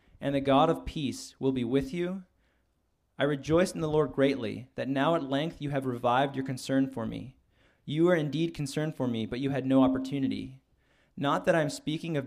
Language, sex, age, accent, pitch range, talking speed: English, male, 20-39, American, 125-140 Hz, 210 wpm